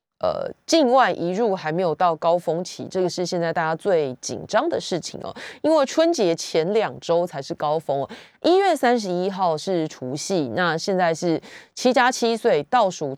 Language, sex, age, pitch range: Chinese, female, 20-39, 165-235 Hz